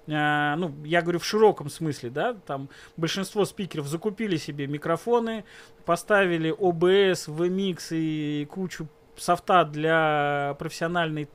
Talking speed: 110 wpm